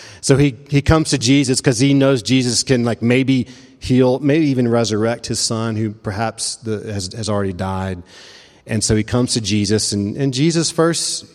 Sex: male